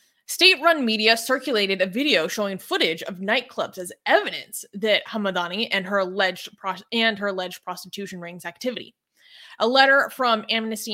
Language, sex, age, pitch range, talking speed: English, female, 20-39, 185-240 Hz, 150 wpm